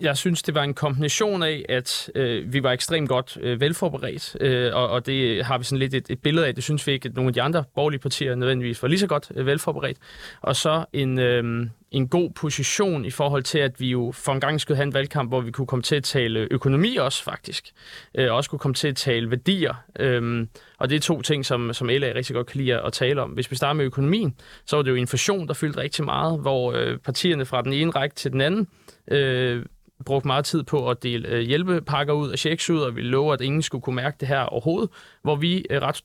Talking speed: 235 wpm